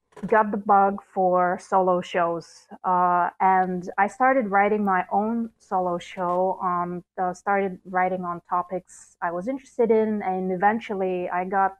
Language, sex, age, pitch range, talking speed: English, female, 30-49, 180-210 Hz, 155 wpm